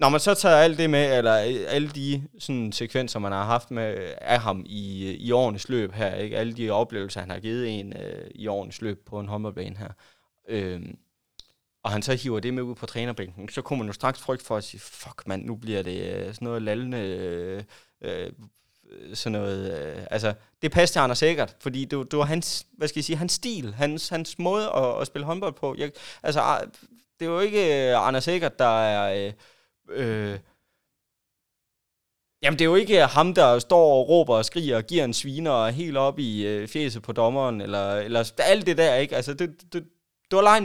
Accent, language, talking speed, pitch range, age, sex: native, Danish, 215 wpm, 110-155 Hz, 20-39, male